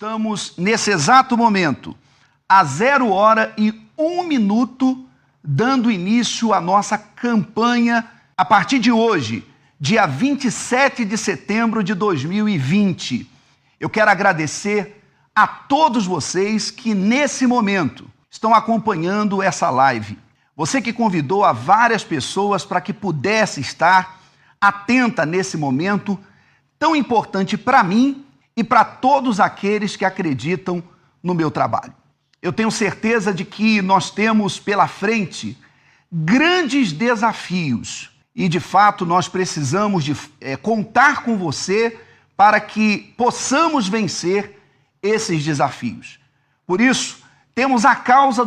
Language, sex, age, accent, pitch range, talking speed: Portuguese, male, 50-69, Brazilian, 175-230 Hz, 115 wpm